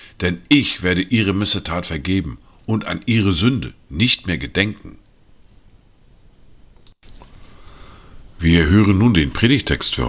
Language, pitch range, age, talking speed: German, 90-110 Hz, 50-69, 115 wpm